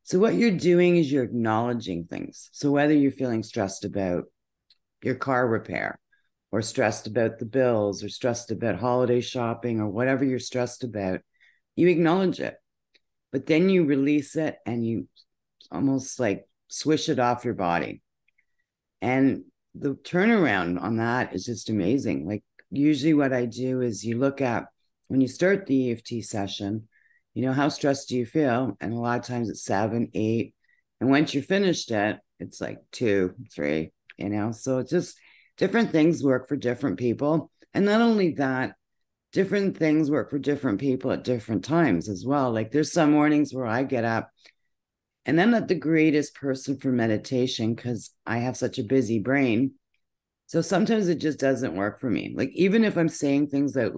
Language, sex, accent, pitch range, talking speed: English, female, American, 115-150 Hz, 180 wpm